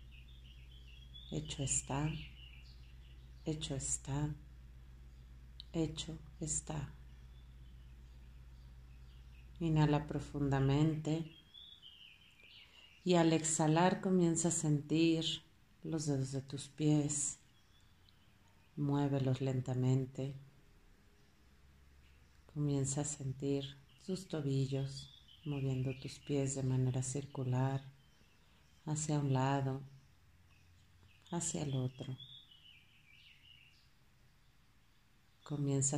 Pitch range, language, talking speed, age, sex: 100-145 Hz, Spanish, 65 wpm, 40-59, female